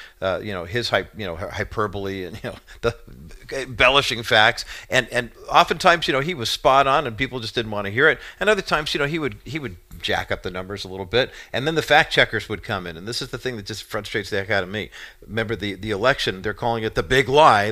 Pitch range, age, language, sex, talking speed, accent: 105-135 Hz, 50-69, English, male, 270 wpm, American